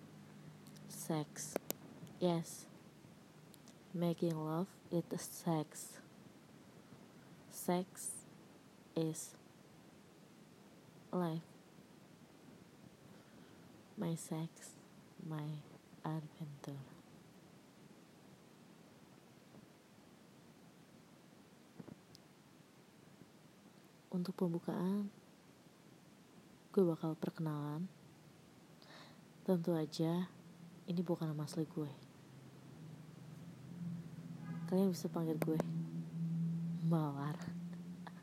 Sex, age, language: female, 20-39, Indonesian